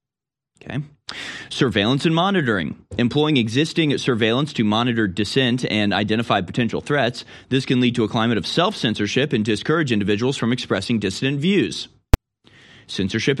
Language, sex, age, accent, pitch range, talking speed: English, male, 30-49, American, 105-135 Hz, 135 wpm